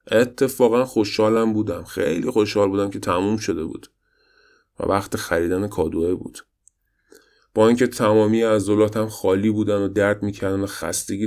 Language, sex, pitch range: Persian, male, 95-110 Hz